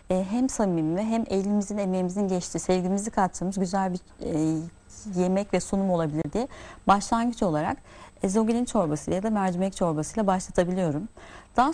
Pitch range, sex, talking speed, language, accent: 170-210 Hz, female, 130 wpm, Turkish, native